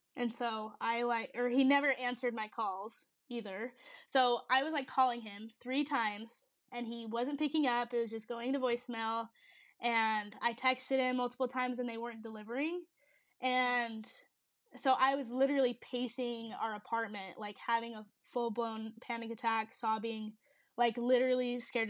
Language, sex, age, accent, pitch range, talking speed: English, female, 10-29, American, 225-270 Hz, 160 wpm